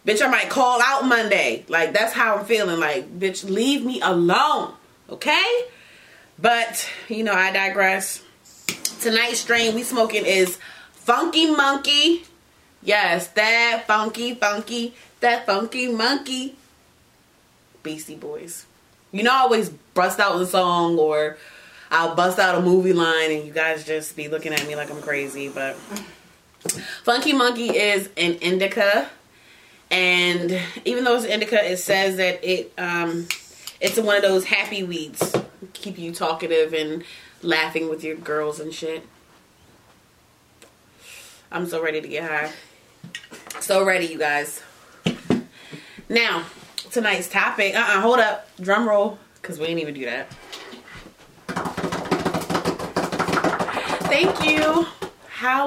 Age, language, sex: 20-39, English, female